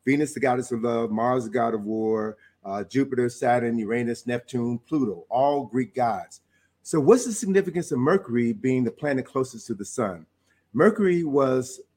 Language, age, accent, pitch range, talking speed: English, 50-69, American, 110-140 Hz, 170 wpm